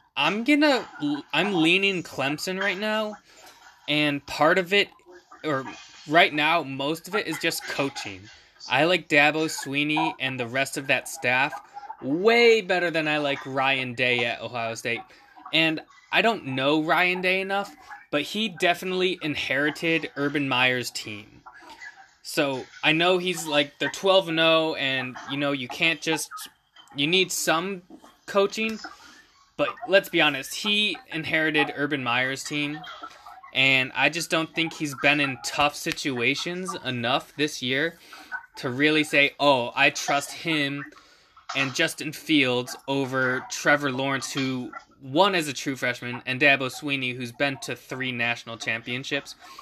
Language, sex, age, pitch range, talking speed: English, male, 20-39, 135-175 Hz, 150 wpm